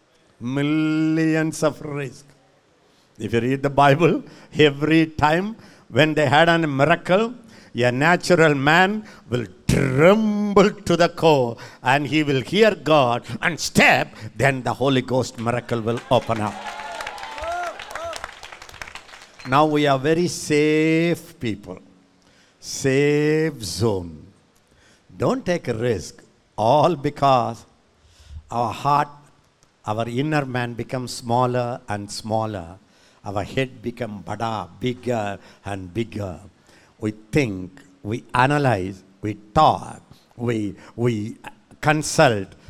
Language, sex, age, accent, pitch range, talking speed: English, male, 60-79, Indian, 115-160 Hz, 105 wpm